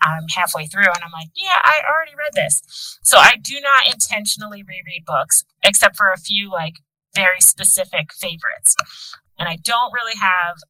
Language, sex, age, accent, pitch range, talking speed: English, female, 30-49, American, 165-215 Hz, 175 wpm